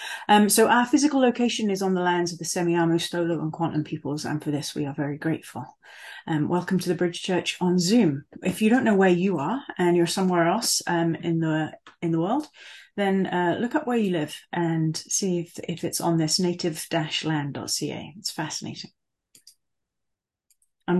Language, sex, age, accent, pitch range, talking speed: English, female, 30-49, British, 165-205 Hz, 190 wpm